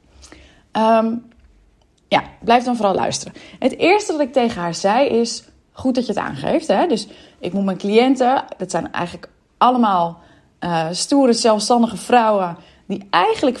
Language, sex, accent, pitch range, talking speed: Dutch, female, Dutch, 200-270 Hz, 155 wpm